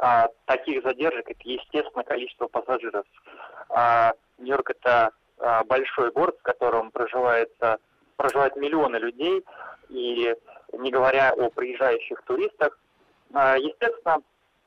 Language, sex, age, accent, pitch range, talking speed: Russian, male, 20-39, native, 125-180 Hz, 100 wpm